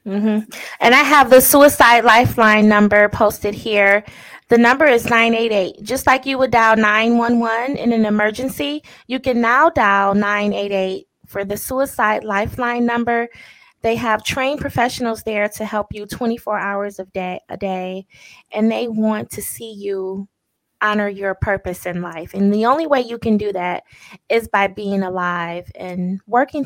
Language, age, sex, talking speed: English, 20-39, female, 160 wpm